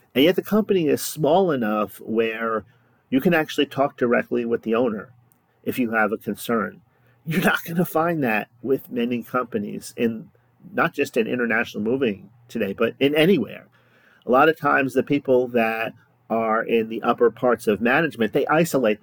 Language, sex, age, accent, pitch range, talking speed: English, male, 40-59, American, 110-135 Hz, 175 wpm